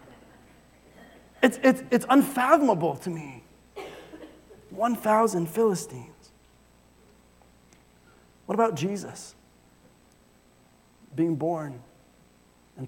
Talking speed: 60 wpm